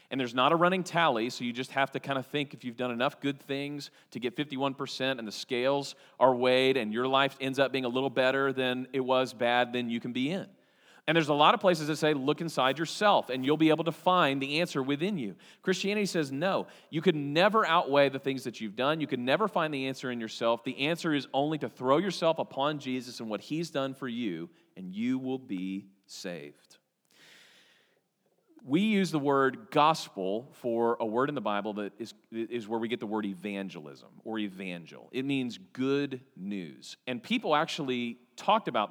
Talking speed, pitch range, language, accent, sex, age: 215 wpm, 120-160 Hz, English, American, male, 40-59